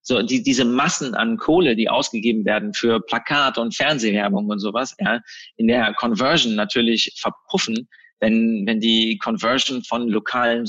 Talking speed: 150 wpm